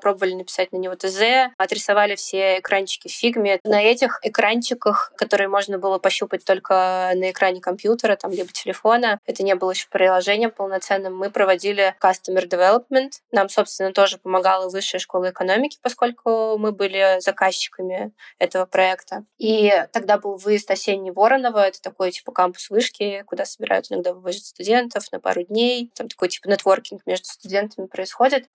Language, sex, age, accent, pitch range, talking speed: Russian, female, 20-39, native, 190-225 Hz, 150 wpm